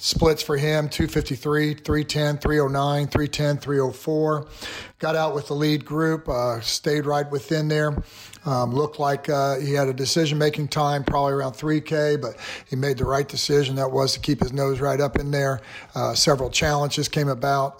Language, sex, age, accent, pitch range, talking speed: English, male, 50-69, American, 130-150 Hz, 175 wpm